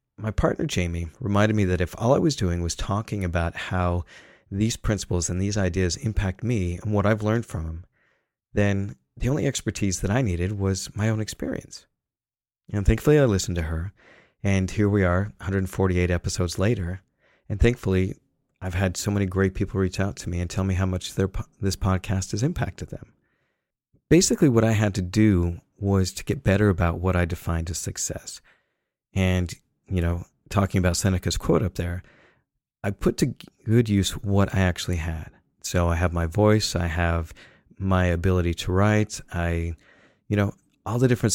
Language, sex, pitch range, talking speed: English, male, 90-105 Hz, 180 wpm